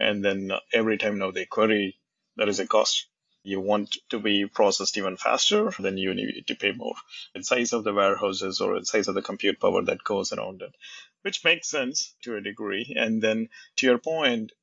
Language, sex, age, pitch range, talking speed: English, male, 30-49, 100-145 Hz, 210 wpm